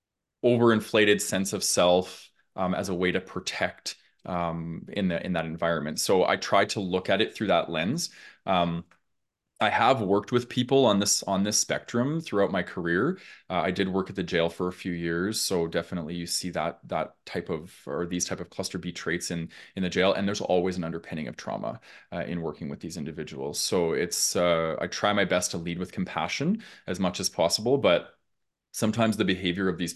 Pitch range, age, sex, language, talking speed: 85-100 Hz, 20-39, male, English, 210 wpm